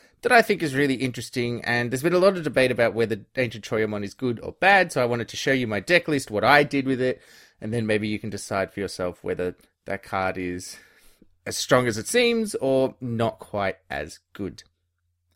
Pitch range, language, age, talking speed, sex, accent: 110-150 Hz, English, 20-39, 225 wpm, male, Australian